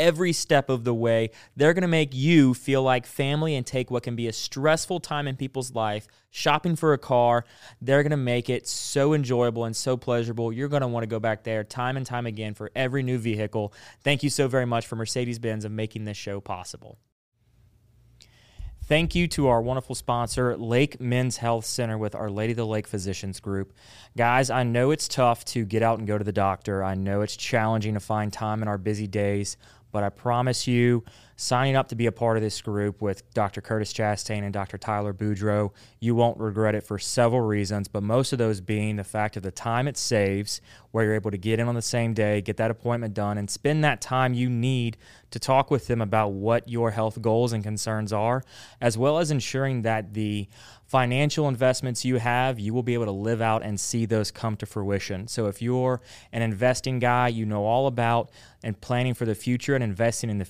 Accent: American